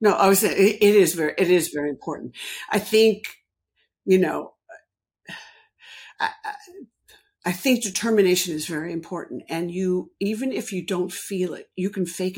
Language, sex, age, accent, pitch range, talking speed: English, female, 60-79, American, 170-205 Hz, 165 wpm